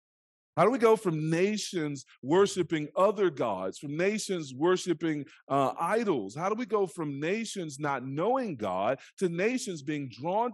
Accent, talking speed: American, 155 wpm